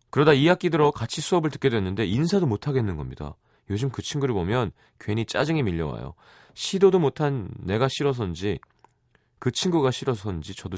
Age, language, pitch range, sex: 30-49, Korean, 95-145 Hz, male